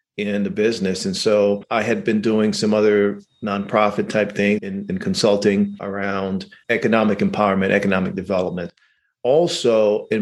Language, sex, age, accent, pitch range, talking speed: English, male, 40-59, American, 105-120 Hz, 145 wpm